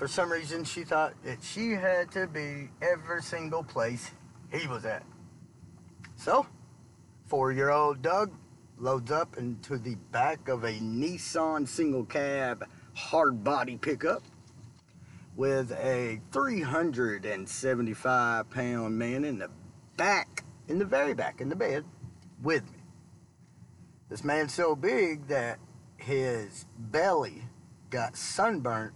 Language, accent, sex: English, American, male